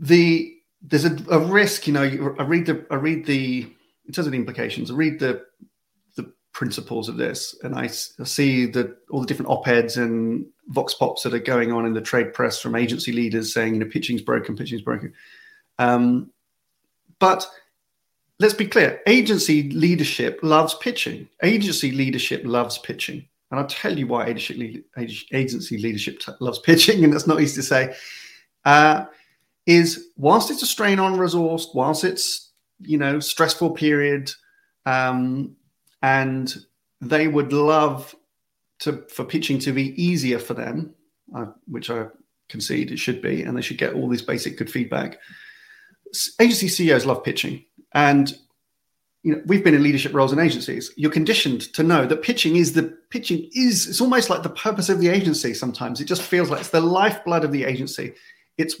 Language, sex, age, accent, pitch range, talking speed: English, male, 30-49, British, 130-175 Hz, 175 wpm